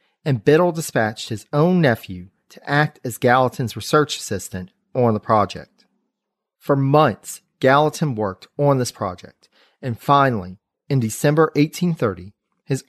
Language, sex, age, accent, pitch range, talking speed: English, male, 40-59, American, 110-150 Hz, 130 wpm